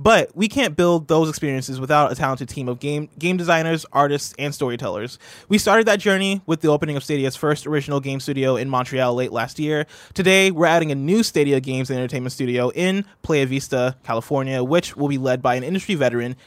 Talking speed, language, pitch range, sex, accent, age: 210 wpm, English, 130-165 Hz, male, American, 20-39